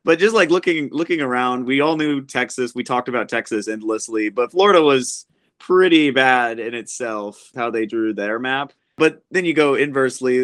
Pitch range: 115-145 Hz